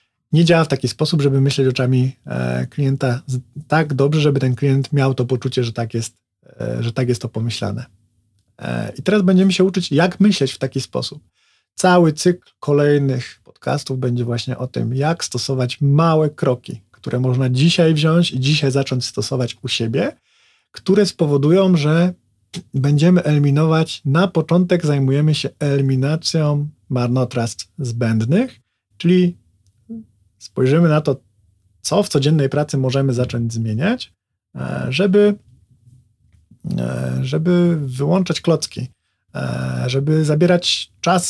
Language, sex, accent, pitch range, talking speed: Polish, male, native, 125-160 Hz, 125 wpm